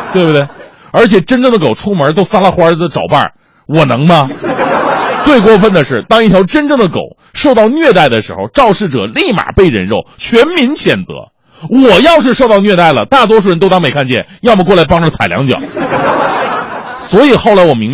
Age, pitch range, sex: 30-49, 135-220 Hz, male